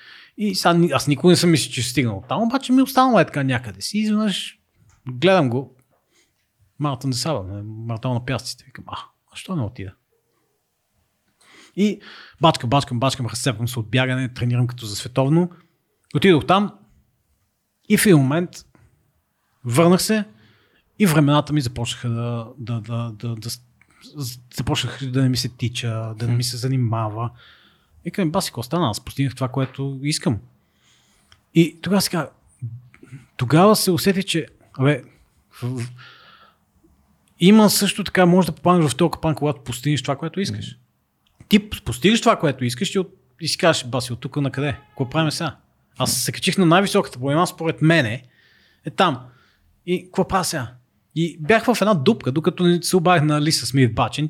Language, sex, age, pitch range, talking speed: Bulgarian, male, 30-49, 120-175 Hz, 160 wpm